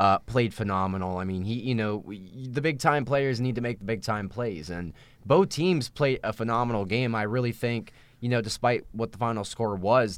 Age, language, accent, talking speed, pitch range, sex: 20-39, English, American, 205 wpm, 95-115 Hz, male